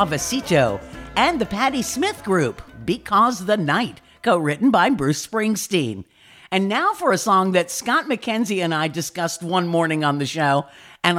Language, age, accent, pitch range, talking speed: English, 50-69, American, 160-215 Hz, 165 wpm